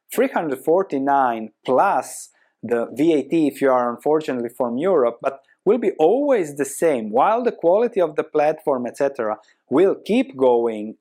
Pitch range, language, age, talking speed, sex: 135-190 Hz, English, 30-49, 140 wpm, male